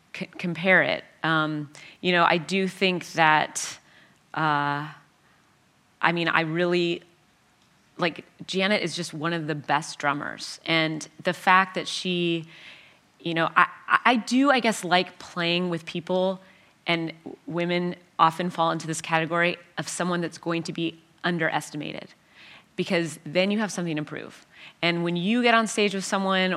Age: 30-49